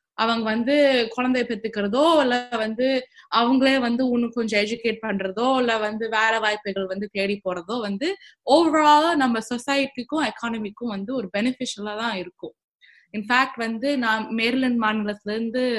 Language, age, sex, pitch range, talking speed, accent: Tamil, 20-39, female, 205-265 Hz, 135 wpm, native